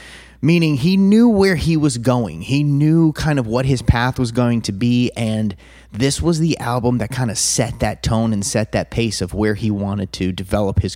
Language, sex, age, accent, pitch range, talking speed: English, male, 30-49, American, 105-150 Hz, 220 wpm